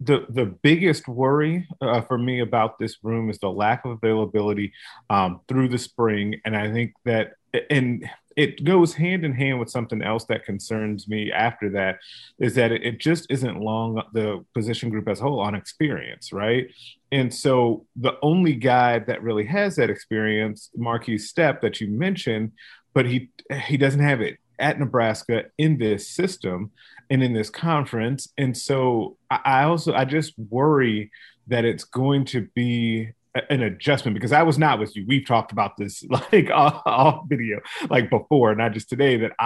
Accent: American